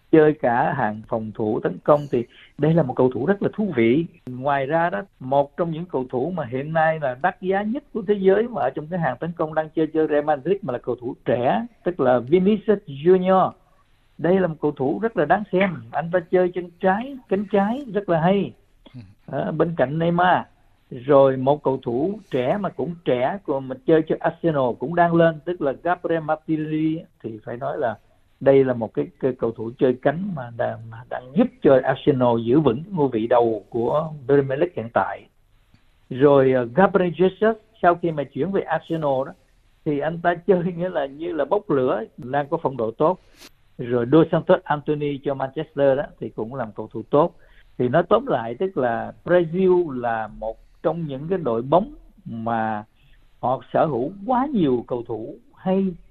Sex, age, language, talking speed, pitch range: male, 60-79, Vietnamese, 200 wpm, 125-180 Hz